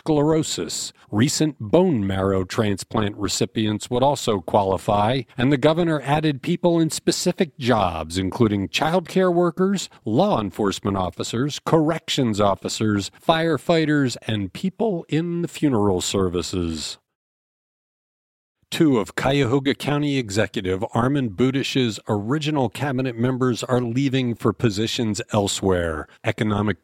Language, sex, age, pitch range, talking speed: English, male, 50-69, 105-155 Hz, 110 wpm